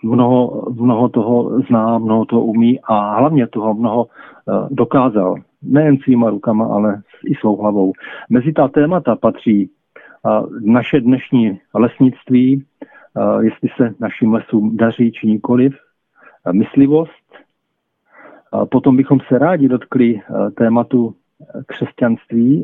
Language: Czech